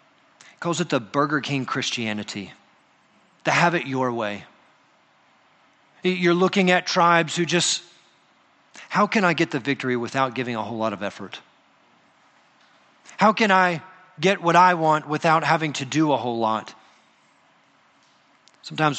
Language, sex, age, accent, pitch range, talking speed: English, male, 40-59, American, 135-185 Hz, 140 wpm